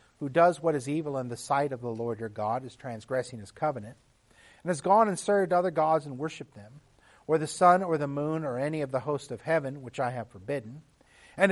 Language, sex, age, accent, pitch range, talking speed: English, male, 40-59, American, 125-155 Hz, 235 wpm